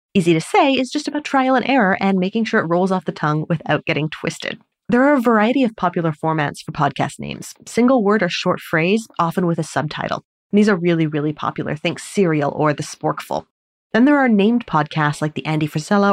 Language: English